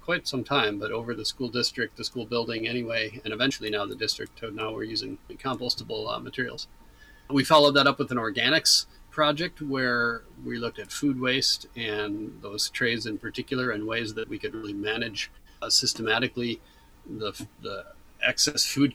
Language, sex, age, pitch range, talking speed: English, male, 40-59, 110-135 Hz, 175 wpm